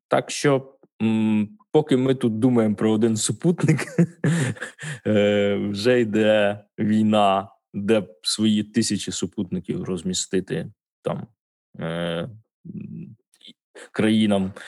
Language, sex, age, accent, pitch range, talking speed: Ukrainian, male, 20-39, native, 100-120 Hz, 90 wpm